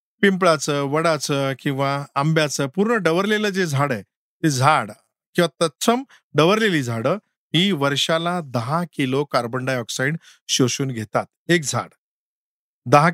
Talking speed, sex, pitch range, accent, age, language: 120 wpm, male, 135-180 Hz, native, 50-69, Marathi